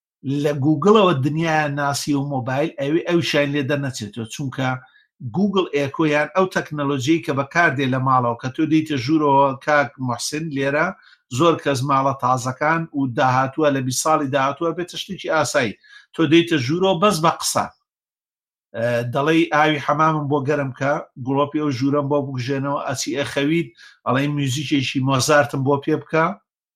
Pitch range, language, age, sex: 145-185 Hz, Arabic, 50-69, male